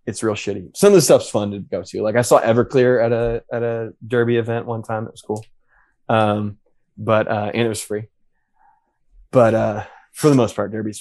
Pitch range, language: 105-120 Hz, English